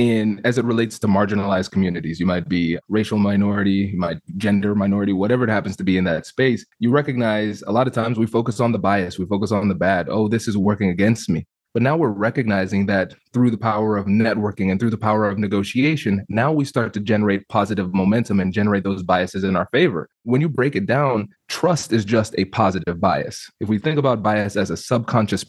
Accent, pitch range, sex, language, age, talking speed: American, 100-135 Hz, male, English, 20-39, 225 wpm